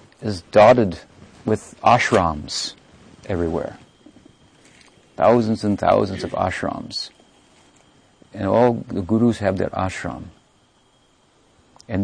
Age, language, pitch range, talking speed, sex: 50-69, English, 95-115 Hz, 90 wpm, male